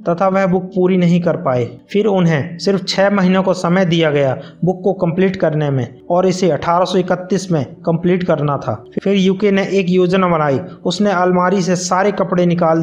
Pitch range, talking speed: 165-190 Hz, 185 wpm